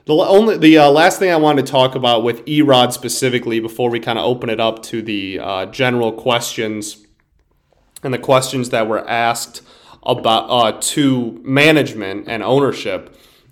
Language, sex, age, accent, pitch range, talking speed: English, male, 30-49, American, 115-145 Hz, 170 wpm